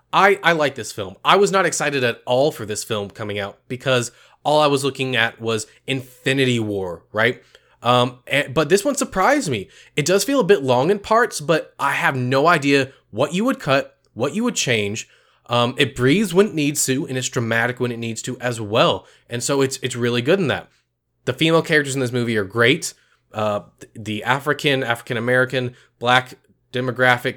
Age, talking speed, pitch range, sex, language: 20-39, 200 wpm, 125-170 Hz, male, English